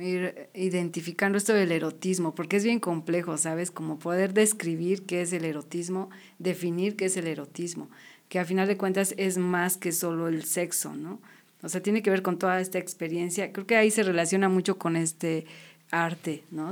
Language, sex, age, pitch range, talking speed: Spanish, female, 40-59, 165-190 Hz, 190 wpm